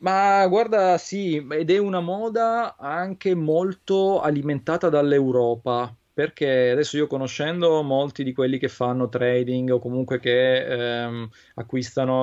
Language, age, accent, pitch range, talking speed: Italian, 20-39, native, 120-140 Hz, 130 wpm